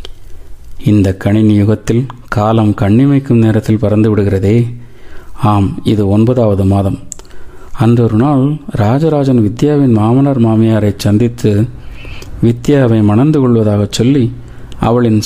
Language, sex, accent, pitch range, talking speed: Tamil, male, native, 105-130 Hz, 100 wpm